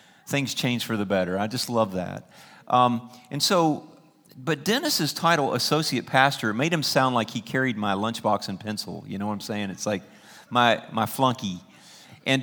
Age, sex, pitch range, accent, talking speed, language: 50-69, male, 105-145 Hz, American, 185 wpm, English